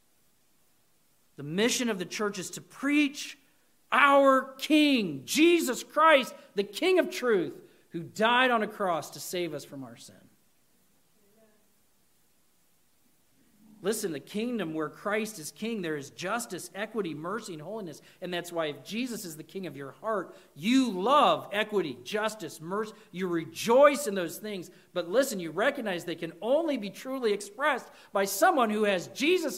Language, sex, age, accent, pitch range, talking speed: English, male, 40-59, American, 195-275 Hz, 155 wpm